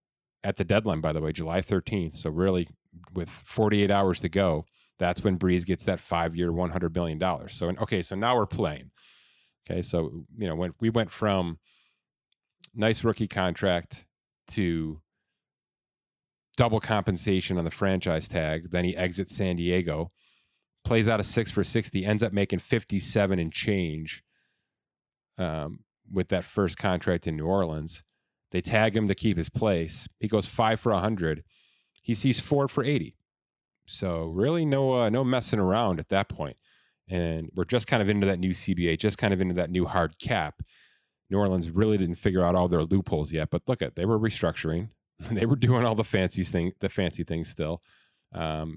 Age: 30-49